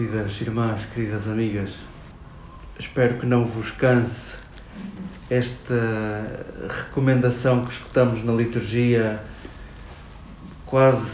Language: Portuguese